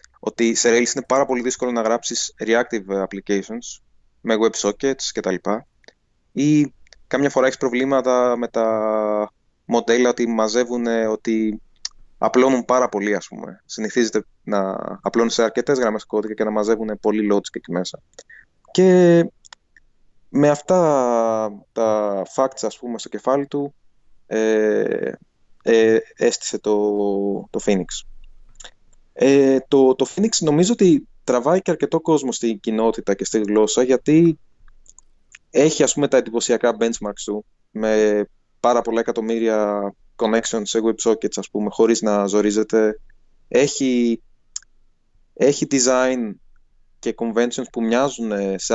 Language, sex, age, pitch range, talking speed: Greek, male, 20-39, 105-125 Hz, 130 wpm